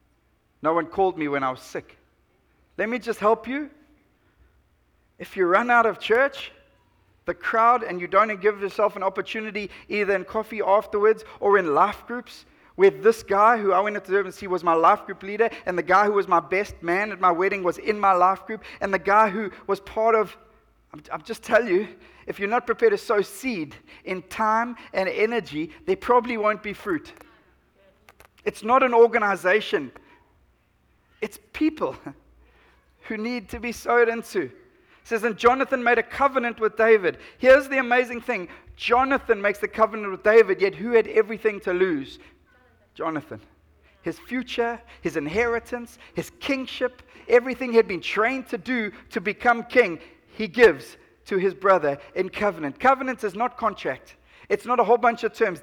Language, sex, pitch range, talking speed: English, male, 190-240 Hz, 180 wpm